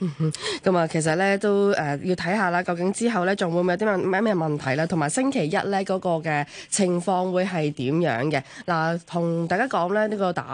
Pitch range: 160-210 Hz